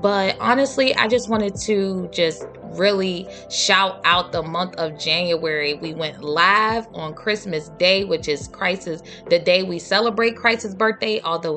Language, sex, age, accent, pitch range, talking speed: English, female, 20-39, American, 180-250 Hz, 150 wpm